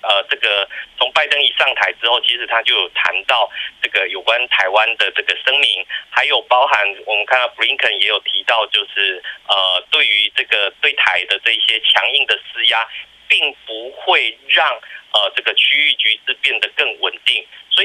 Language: Chinese